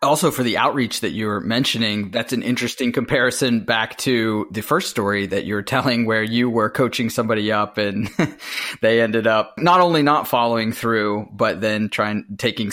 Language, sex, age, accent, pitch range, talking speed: English, male, 20-39, American, 105-125 Hz, 180 wpm